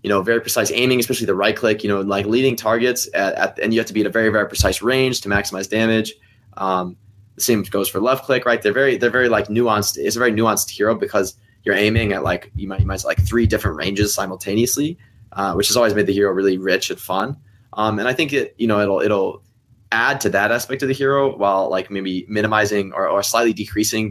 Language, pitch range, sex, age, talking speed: English, 100-120 Hz, male, 20-39, 245 wpm